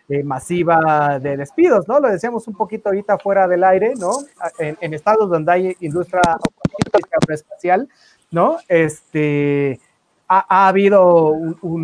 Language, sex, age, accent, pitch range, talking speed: Spanish, male, 30-49, Mexican, 165-220 Hz, 135 wpm